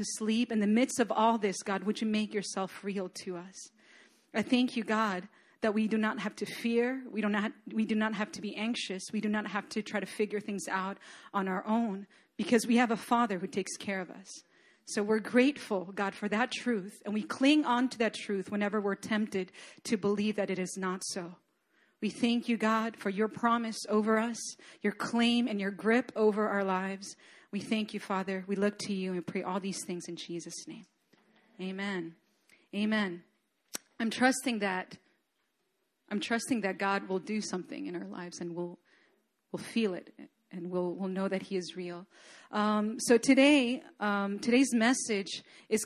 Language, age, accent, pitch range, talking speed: English, 40-59, American, 195-230 Hz, 200 wpm